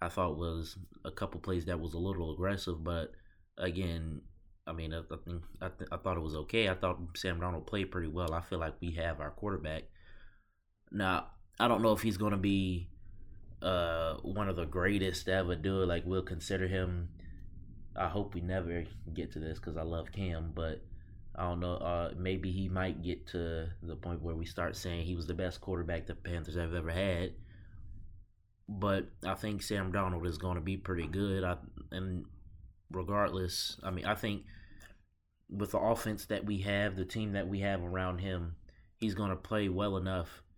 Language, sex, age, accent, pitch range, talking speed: English, male, 20-39, American, 85-95 Hz, 195 wpm